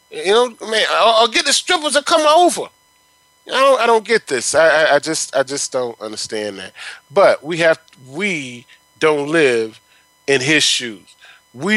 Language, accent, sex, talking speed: English, American, male, 185 wpm